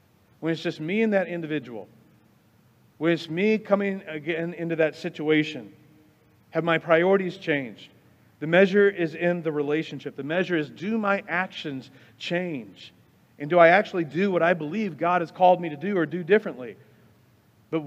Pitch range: 150-190 Hz